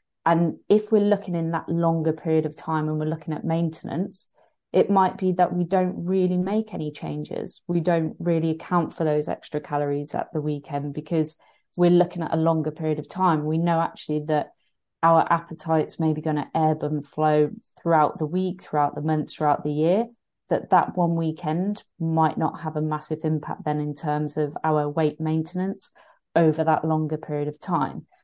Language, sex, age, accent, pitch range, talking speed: English, female, 30-49, British, 150-170 Hz, 190 wpm